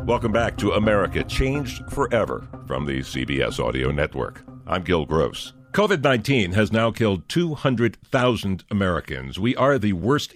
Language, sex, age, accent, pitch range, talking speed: English, male, 60-79, American, 90-120 Hz, 140 wpm